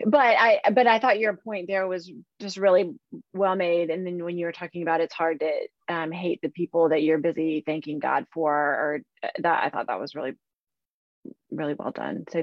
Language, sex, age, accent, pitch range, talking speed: English, female, 30-49, American, 175-210 Hz, 215 wpm